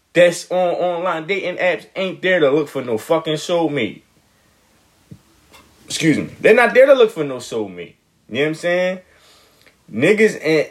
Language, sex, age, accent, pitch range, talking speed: English, male, 20-39, American, 165-275 Hz, 160 wpm